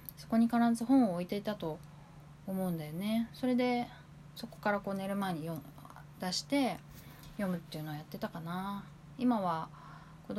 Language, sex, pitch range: Japanese, female, 155-205 Hz